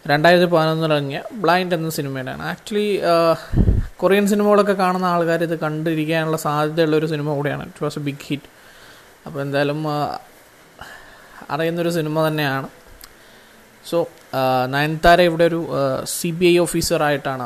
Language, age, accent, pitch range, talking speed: Malayalam, 20-39, native, 140-170 Hz, 120 wpm